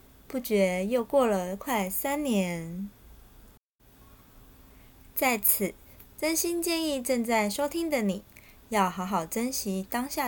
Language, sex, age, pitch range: Chinese, female, 20-39, 190-245 Hz